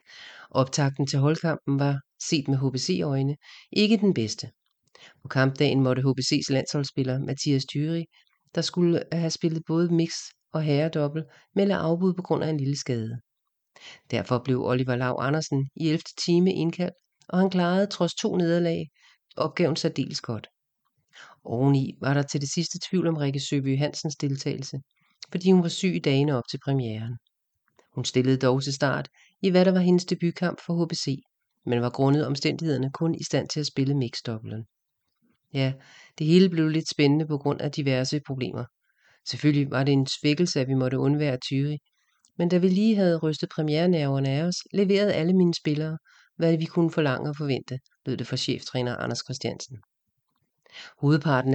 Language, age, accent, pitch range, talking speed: English, 40-59, Danish, 135-165 Hz, 170 wpm